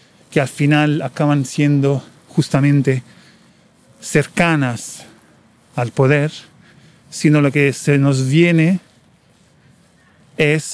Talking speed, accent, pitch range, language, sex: 90 wpm, Argentinian, 135-155 Hz, Spanish, male